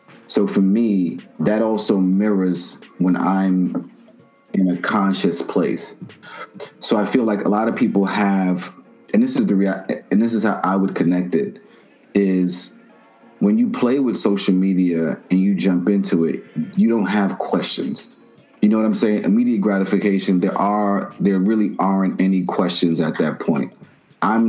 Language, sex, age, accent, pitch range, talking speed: English, male, 30-49, American, 95-110 Hz, 165 wpm